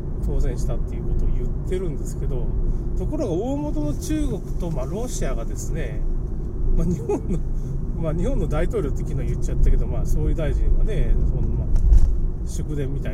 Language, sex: Japanese, male